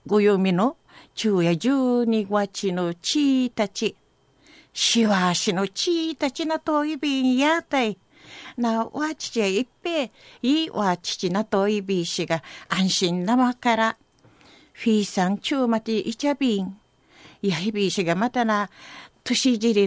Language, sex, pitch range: Japanese, female, 210-305 Hz